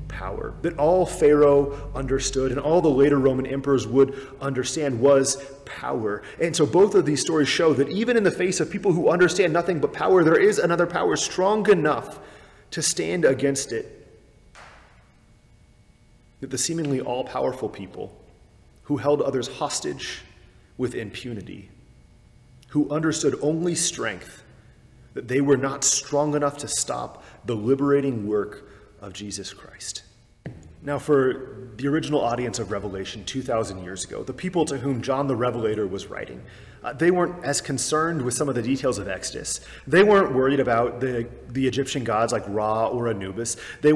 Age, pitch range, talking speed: 30-49, 120-155 Hz, 160 wpm